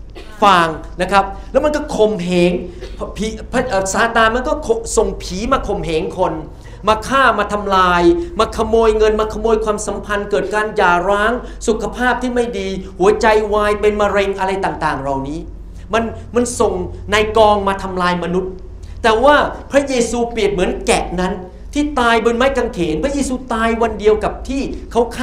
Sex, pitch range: male, 185-235 Hz